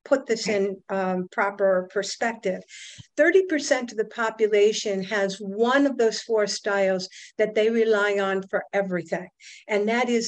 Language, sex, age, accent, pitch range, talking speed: English, female, 50-69, American, 195-245 Hz, 145 wpm